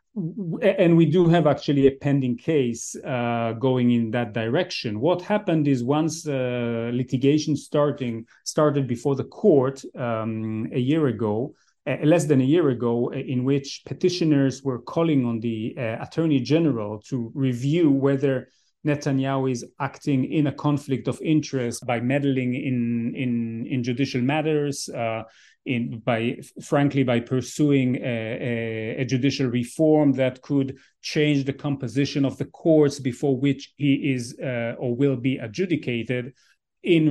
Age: 30-49